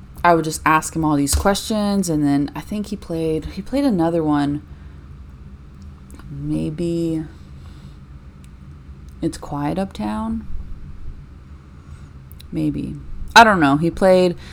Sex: female